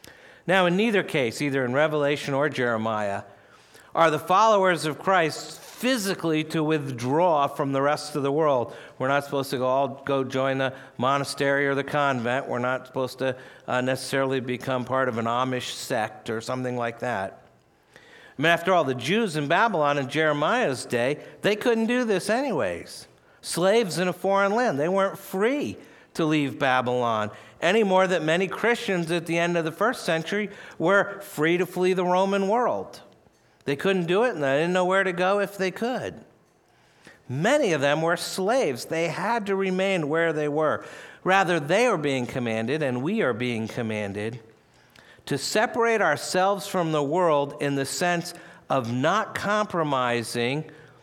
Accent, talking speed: American, 170 wpm